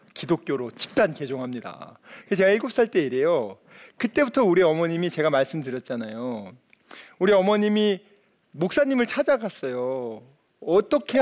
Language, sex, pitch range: Korean, male, 160-240 Hz